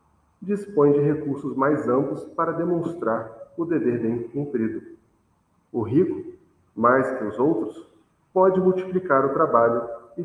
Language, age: Portuguese, 40-59